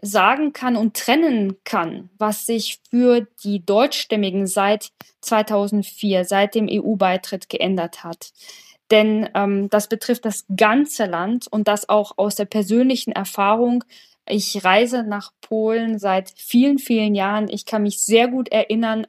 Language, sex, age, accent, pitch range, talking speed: German, female, 20-39, German, 205-230 Hz, 140 wpm